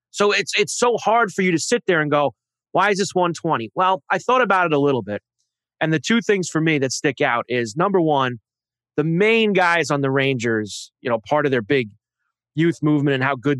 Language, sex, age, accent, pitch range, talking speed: English, male, 30-49, American, 135-210 Hz, 235 wpm